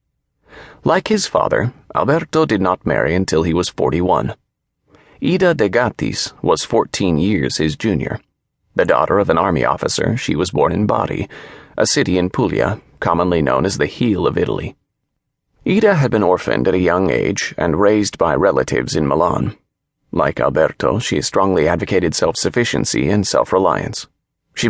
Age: 30-49